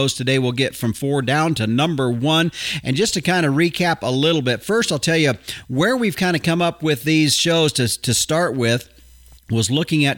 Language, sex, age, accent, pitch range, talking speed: English, male, 40-59, American, 125-150 Hz, 225 wpm